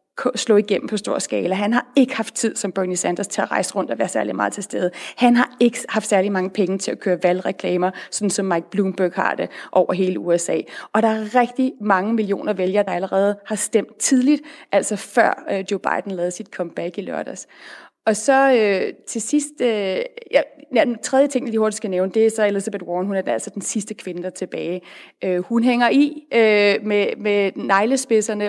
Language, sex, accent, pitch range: Danish, female, native, 200-245 Hz